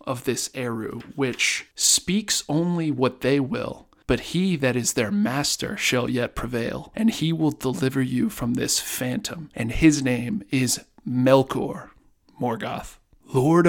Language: English